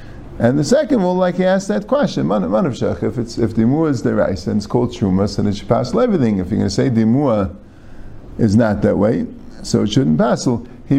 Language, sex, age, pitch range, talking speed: English, male, 50-69, 105-145 Hz, 235 wpm